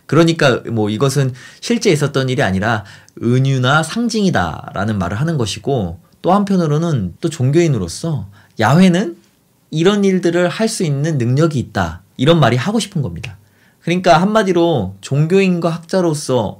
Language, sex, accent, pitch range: Korean, male, native, 115-185 Hz